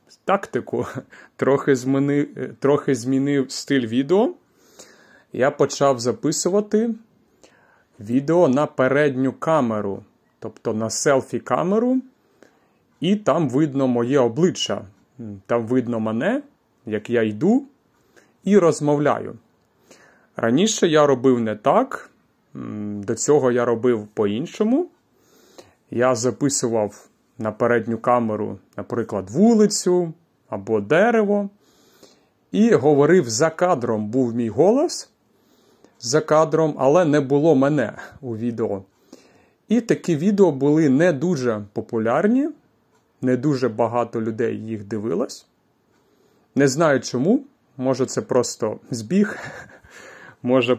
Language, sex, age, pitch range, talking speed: Ukrainian, male, 30-49, 115-165 Hz, 100 wpm